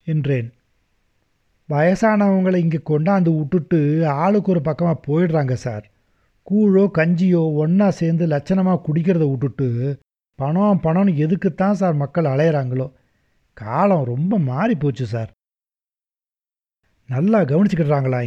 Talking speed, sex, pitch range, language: 100 wpm, male, 130-185 Hz, Tamil